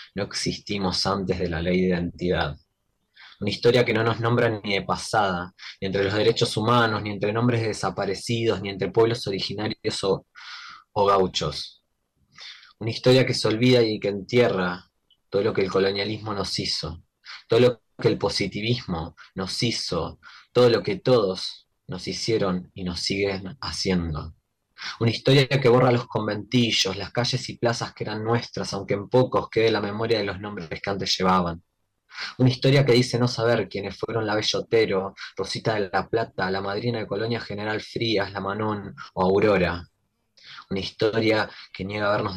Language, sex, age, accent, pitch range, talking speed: Spanish, male, 20-39, Argentinian, 95-115 Hz, 170 wpm